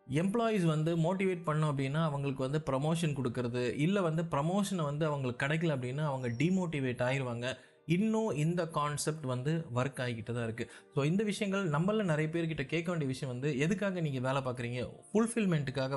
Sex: male